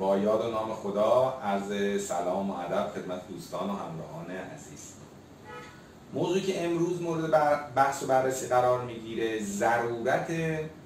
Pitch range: 100-135 Hz